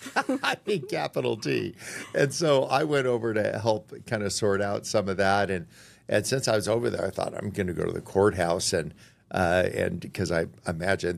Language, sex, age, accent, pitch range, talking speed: English, male, 50-69, American, 100-125 Hz, 215 wpm